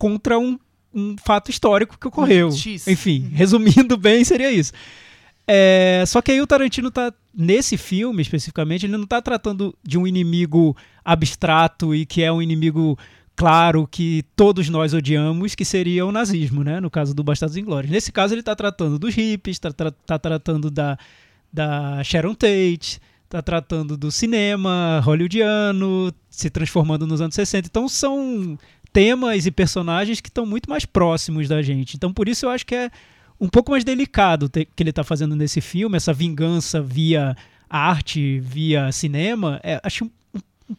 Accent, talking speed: Brazilian, 170 wpm